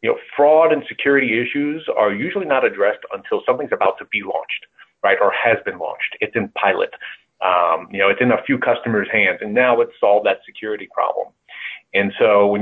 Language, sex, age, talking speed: English, male, 30-49, 205 wpm